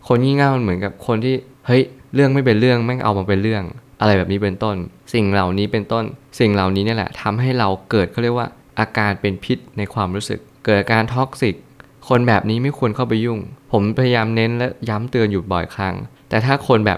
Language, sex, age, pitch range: Thai, male, 20-39, 100-125 Hz